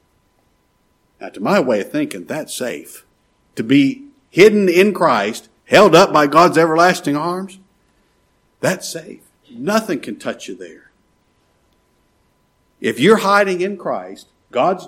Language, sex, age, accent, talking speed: English, male, 60-79, American, 130 wpm